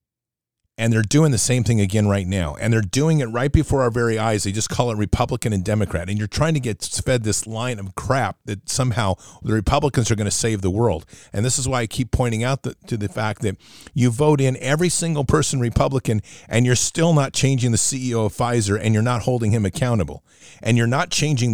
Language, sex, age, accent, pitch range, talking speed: English, male, 40-59, American, 105-125 Hz, 230 wpm